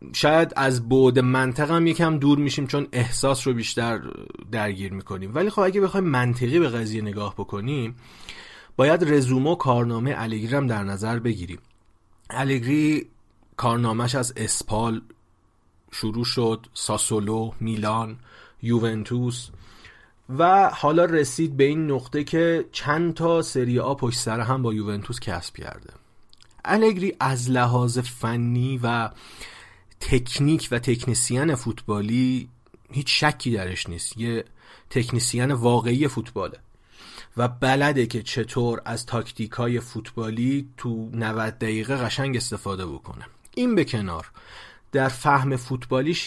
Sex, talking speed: male, 120 wpm